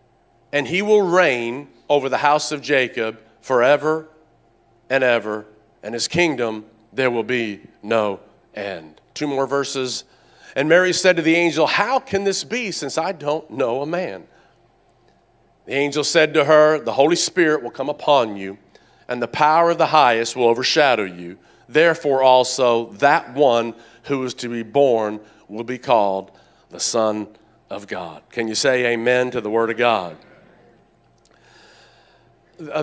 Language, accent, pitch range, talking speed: English, American, 115-150 Hz, 155 wpm